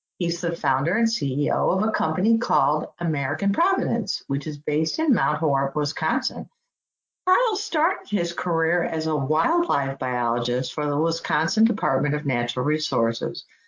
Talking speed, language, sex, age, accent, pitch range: 145 wpm, English, female, 50-69, American, 150-230 Hz